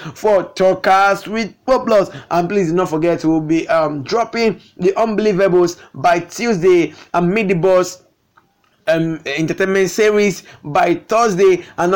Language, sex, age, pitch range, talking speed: English, male, 20-39, 175-205 Hz, 135 wpm